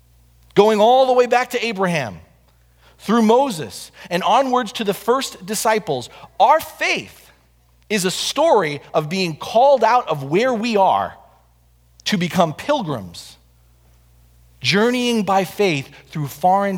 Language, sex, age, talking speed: English, male, 40-59, 130 wpm